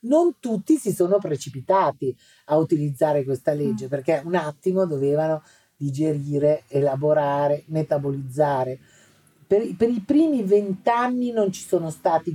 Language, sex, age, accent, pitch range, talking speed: Italian, female, 50-69, native, 150-195 Hz, 120 wpm